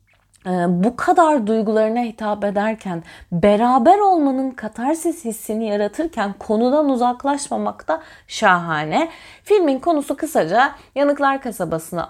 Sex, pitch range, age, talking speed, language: female, 200-265 Hz, 30-49, 95 wpm, Turkish